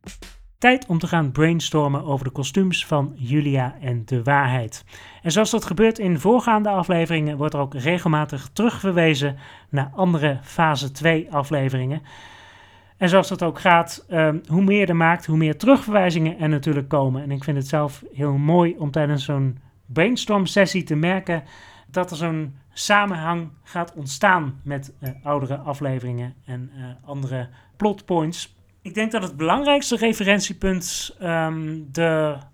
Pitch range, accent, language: 145-185 Hz, Dutch, Dutch